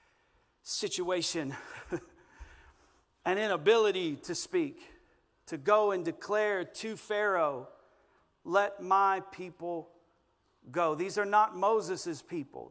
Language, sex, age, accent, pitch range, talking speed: English, male, 50-69, American, 180-215 Hz, 95 wpm